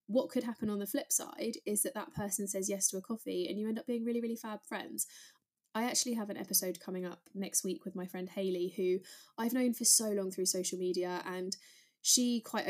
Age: 20-39